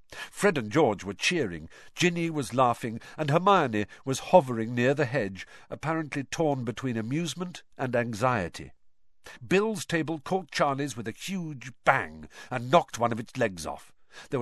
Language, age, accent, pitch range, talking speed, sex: English, 50-69, British, 105-165 Hz, 155 wpm, male